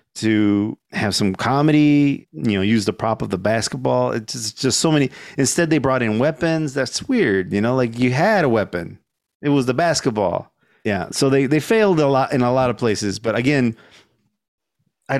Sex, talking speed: male, 195 wpm